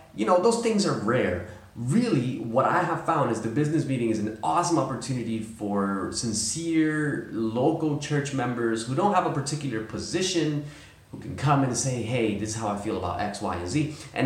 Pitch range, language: 100-135 Hz, English